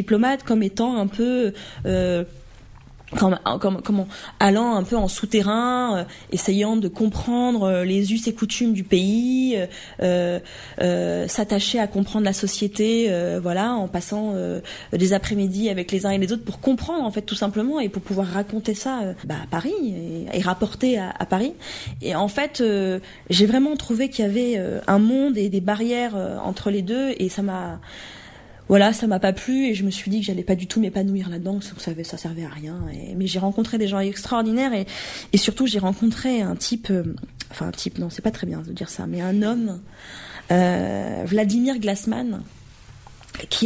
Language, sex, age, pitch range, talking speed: French, female, 20-39, 190-225 Hz, 200 wpm